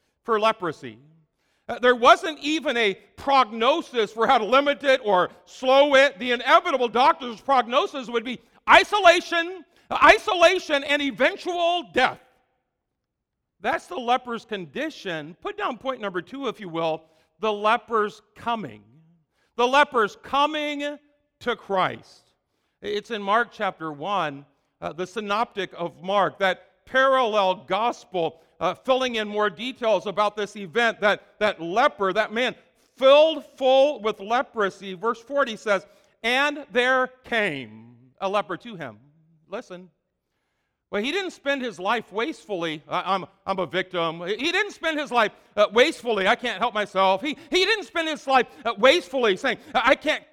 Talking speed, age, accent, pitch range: 140 wpm, 50-69, American, 195-275 Hz